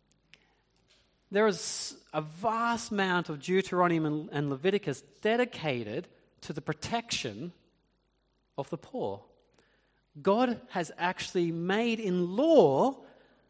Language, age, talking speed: English, 40-59, 100 wpm